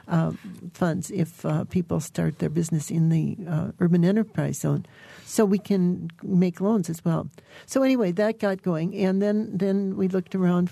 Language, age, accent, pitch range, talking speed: English, 60-79, American, 165-190 Hz, 180 wpm